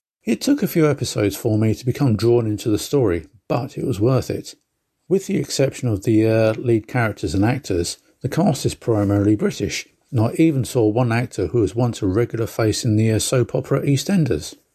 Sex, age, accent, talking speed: male, 50-69, British, 210 wpm